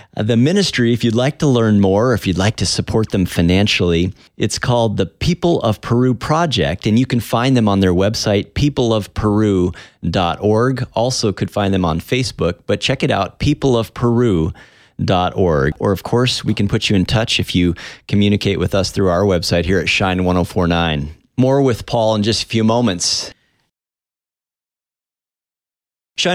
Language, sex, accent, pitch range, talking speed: English, male, American, 100-135 Hz, 160 wpm